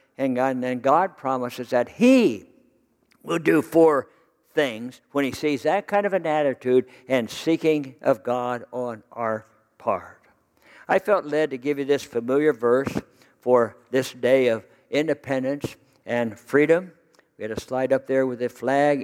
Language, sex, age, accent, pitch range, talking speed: English, male, 60-79, American, 130-175 Hz, 160 wpm